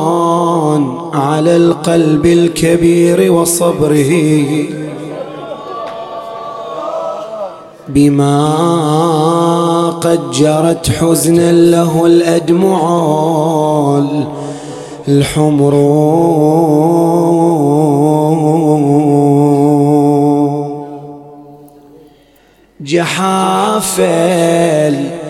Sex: male